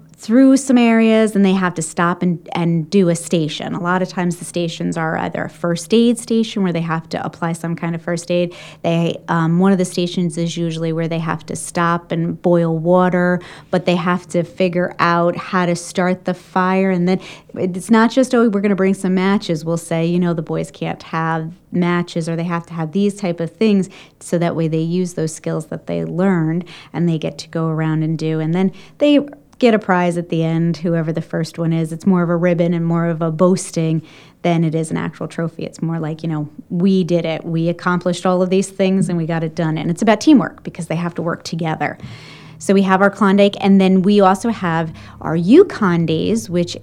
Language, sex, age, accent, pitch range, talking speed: English, female, 30-49, American, 165-190 Hz, 235 wpm